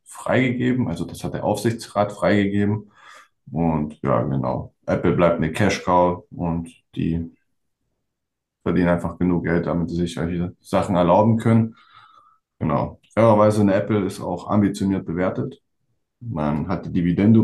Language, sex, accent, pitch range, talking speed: German, male, German, 85-115 Hz, 130 wpm